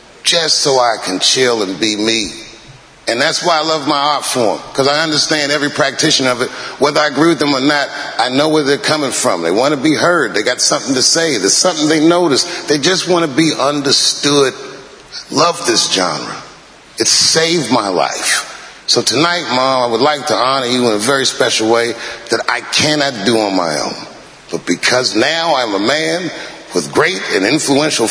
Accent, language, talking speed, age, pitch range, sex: American, English, 200 wpm, 40-59, 130-170 Hz, male